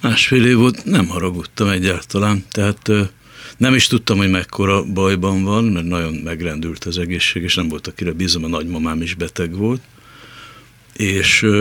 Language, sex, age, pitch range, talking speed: Hungarian, male, 60-79, 90-115 Hz, 155 wpm